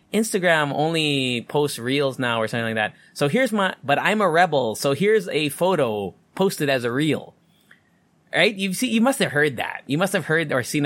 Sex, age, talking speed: male, 20-39, 210 wpm